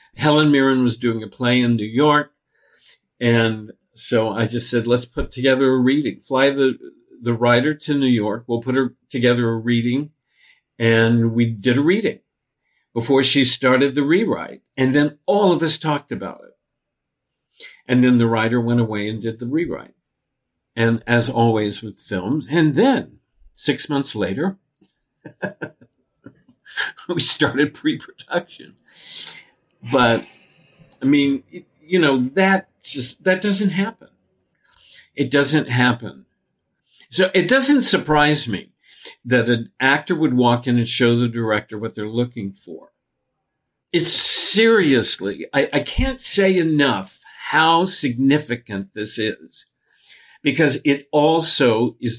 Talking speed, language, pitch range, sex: 140 wpm, English, 115-150 Hz, male